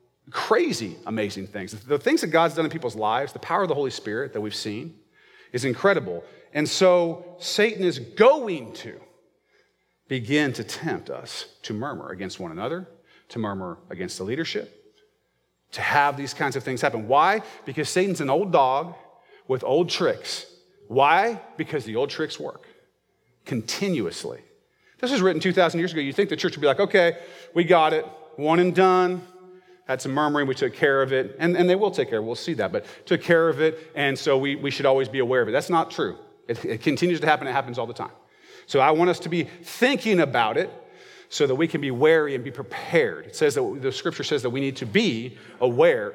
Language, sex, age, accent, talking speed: English, male, 40-59, American, 210 wpm